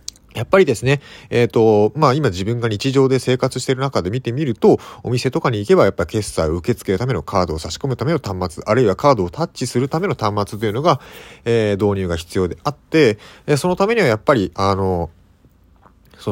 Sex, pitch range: male, 95-145 Hz